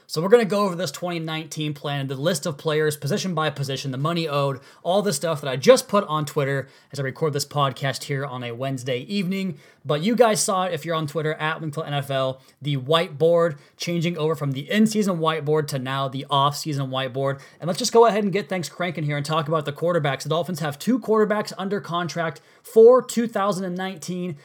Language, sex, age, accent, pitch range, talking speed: English, male, 20-39, American, 140-170 Hz, 215 wpm